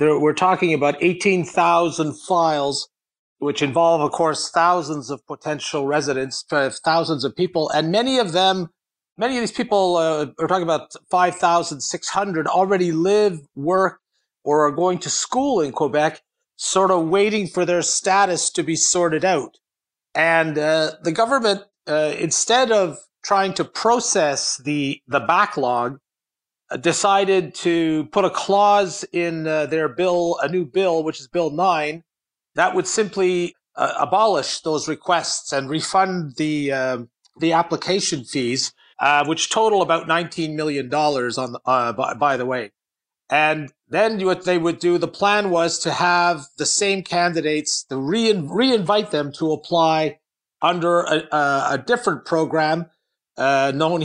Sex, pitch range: male, 150-185 Hz